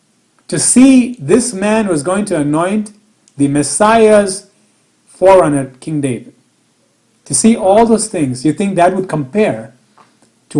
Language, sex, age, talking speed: English, male, 40-59, 135 wpm